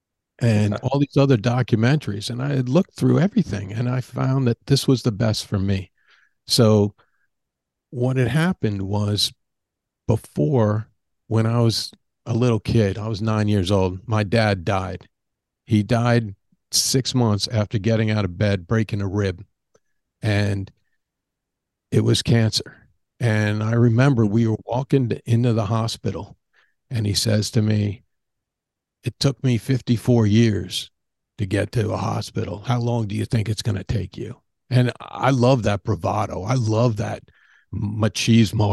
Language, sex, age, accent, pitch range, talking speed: English, male, 50-69, American, 105-125 Hz, 155 wpm